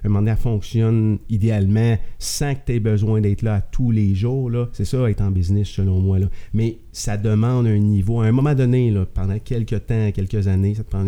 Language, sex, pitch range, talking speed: French, male, 100-125 Hz, 220 wpm